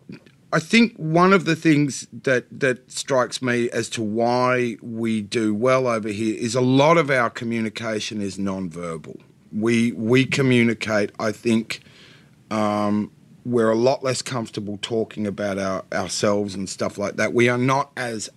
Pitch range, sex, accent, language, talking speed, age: 100-125 Hz, male, Australian, English, 155 wpm, 30-49